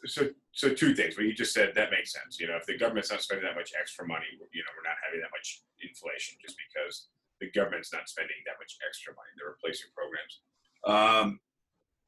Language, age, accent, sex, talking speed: English, 30-49, American, male, 225 wpm